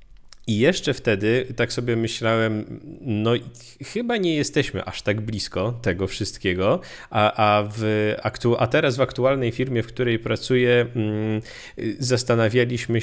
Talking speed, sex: 115 wpm, male